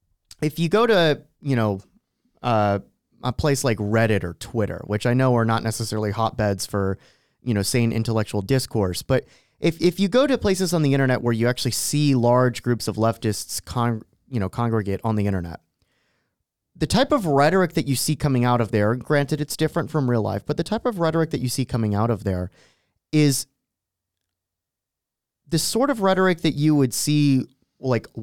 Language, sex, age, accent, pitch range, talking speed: English, male, 30-49, American, 110-150 Hz, 190 wpm